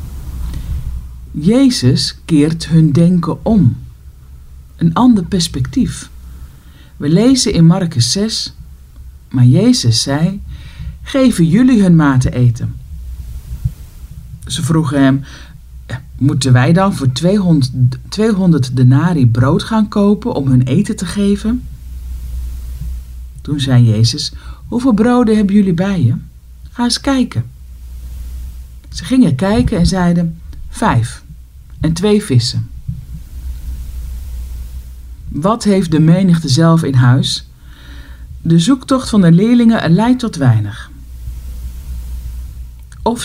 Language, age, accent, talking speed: Dutch, 50-69, Dutch, 105 wpm